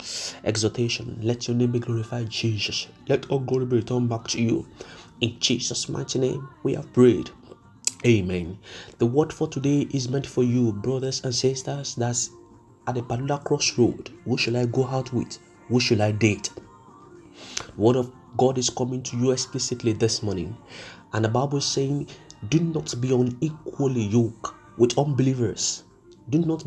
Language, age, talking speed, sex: English, 30-49, 160 wpm, male